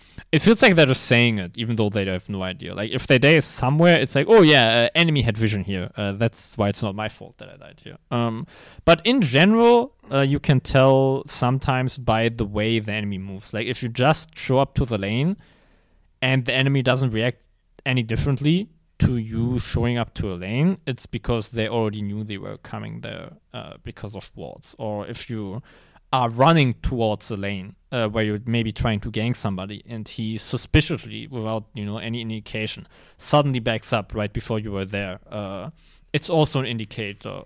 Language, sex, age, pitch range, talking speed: English, male, 20-39, 105-140 Hz, 200 wpm